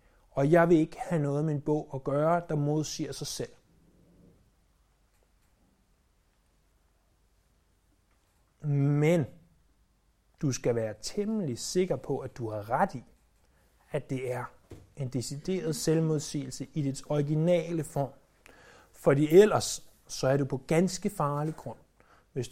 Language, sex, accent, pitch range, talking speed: Danish, male, native, 135-175 Hz, 125 wpm